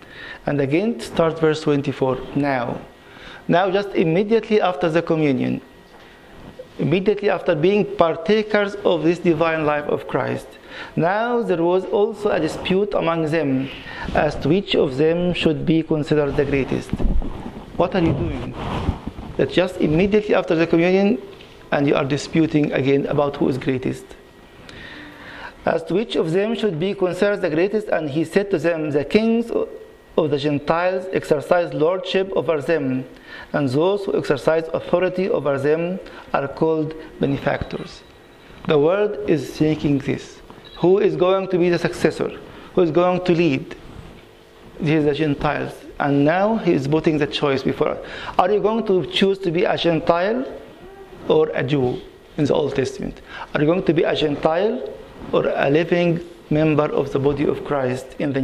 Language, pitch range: English, 150-190 Hz